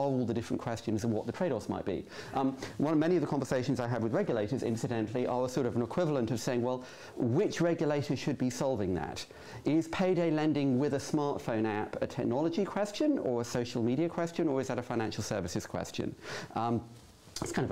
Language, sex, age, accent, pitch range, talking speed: English, male, 40-59, British, 110-135 Hz, 215 wpm